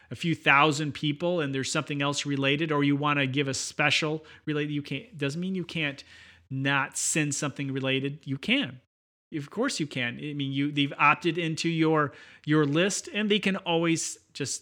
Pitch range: 135-170 Hz